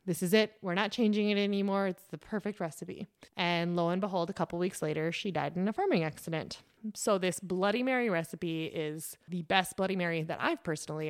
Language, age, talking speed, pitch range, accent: English, 20-39, 210 wpm, 165-200 Hz, American